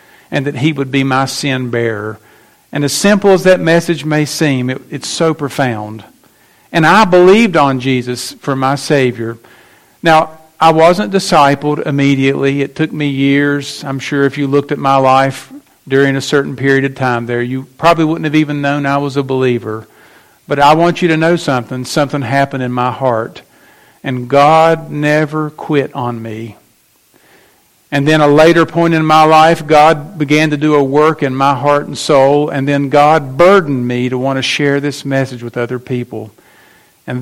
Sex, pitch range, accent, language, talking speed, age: male, 130-155 Hz, American, English, 180 wpm, 50-69